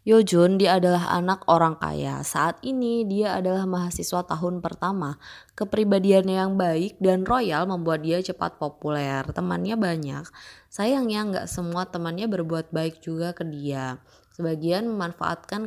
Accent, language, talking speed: native, Indonesian, 140 wpm